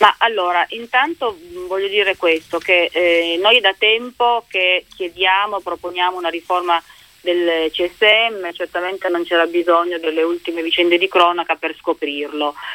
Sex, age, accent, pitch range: female, 30-49, native, 165-205 Hz